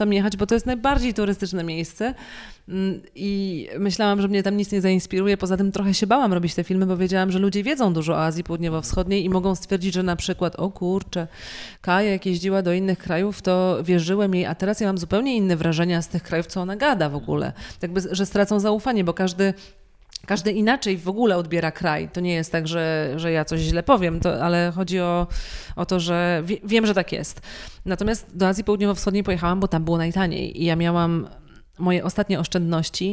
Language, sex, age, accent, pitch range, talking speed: Polish, female, 30-49, native, 170-200 Hz, 205 wpm